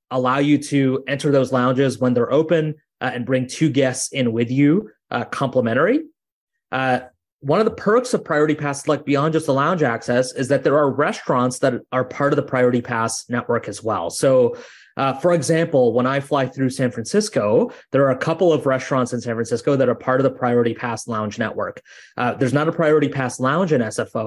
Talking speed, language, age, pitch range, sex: 210 wpm, English, 20-39, 120-145 Hz, male